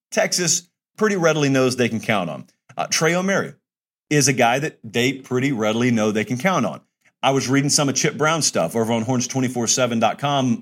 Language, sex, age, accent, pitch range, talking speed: English, male, 40-59, American, 125-160 Hz, 190 wpm